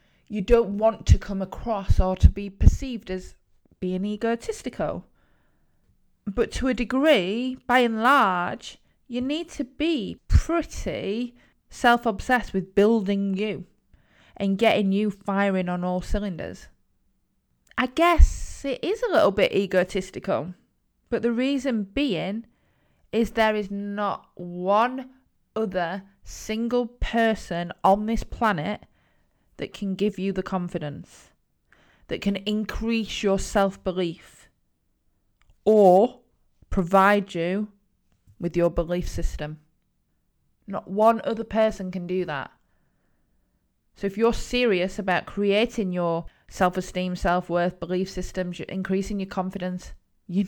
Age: 20-39